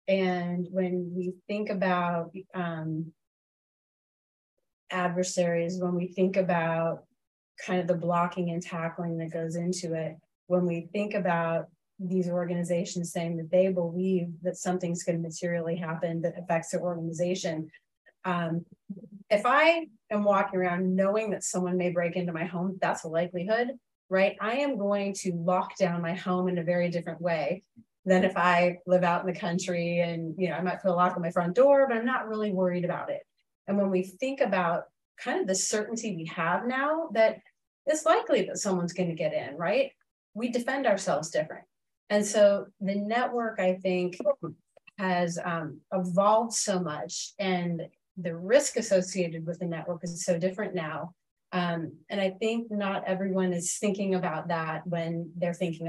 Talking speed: 170 wpm